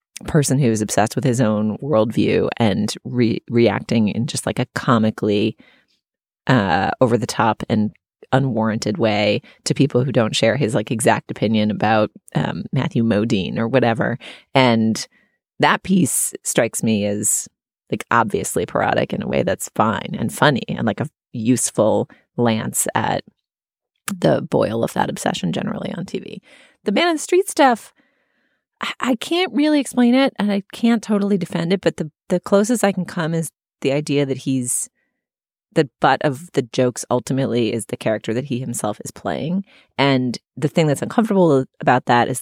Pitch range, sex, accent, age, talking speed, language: 115-180 Hz, female, American, 30-49, 165 wpm, English